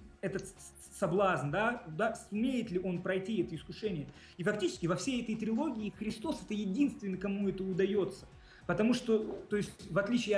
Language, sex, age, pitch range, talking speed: Russian, male, 20-39, 175-225 Hz, 160 wpm